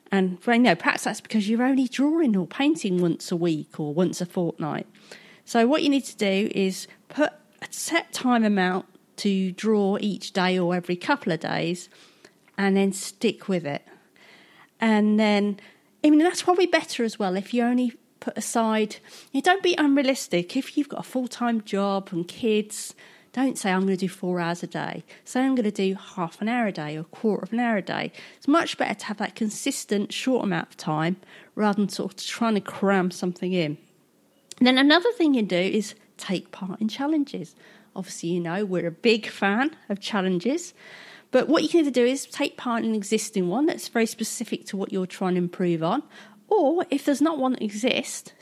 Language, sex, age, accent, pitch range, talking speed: English, female, 40-59, British, 190-260 Hz, 210 wpm